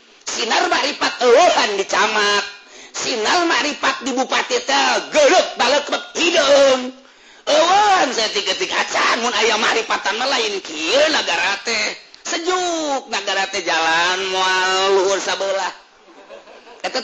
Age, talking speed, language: 40-59, 100 wpm, Indonesian